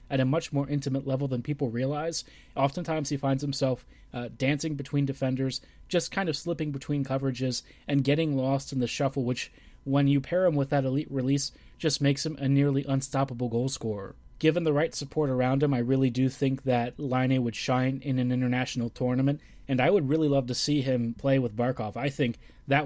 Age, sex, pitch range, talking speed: 20-39, male, 130-145 Hz, 205 wpm